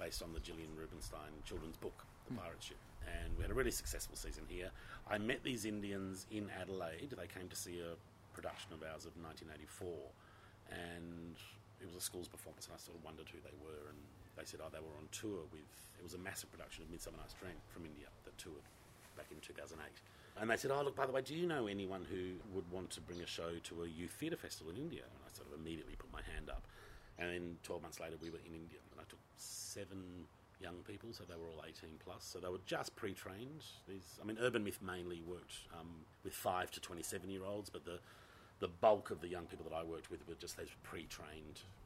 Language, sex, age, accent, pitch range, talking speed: English, male, 40-59, Australian, 85-105 Hz, 230 wpm